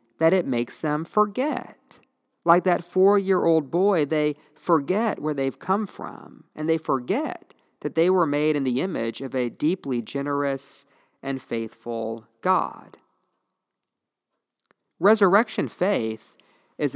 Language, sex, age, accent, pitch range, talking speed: English, male, 40-59, American, 130-170 Hz, 125 wpm